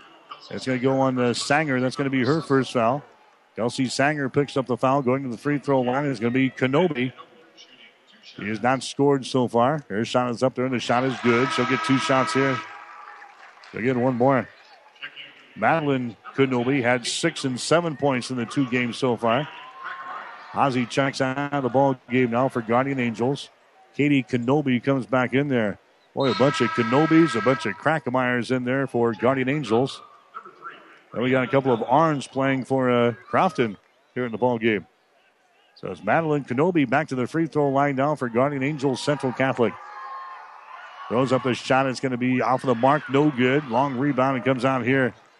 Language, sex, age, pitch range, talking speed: English, male, 50-69, 125-140 Hz, 200 wpm